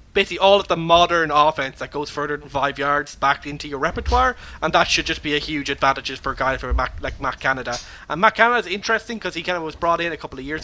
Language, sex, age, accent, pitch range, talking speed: English, male, 20-39, Irish, 135-165 Hz, 255 wpm